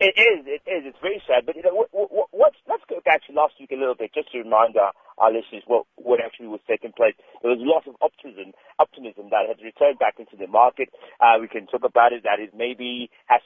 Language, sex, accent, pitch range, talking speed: English, male, British, 120-190 Hz, 260 wpm